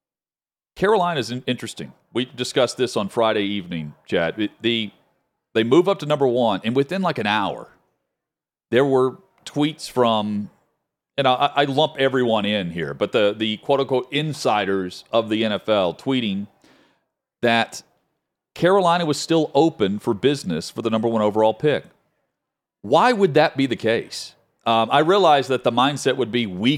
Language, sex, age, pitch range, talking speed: English, male, 40-59, 115-150 Hz, 155 wpm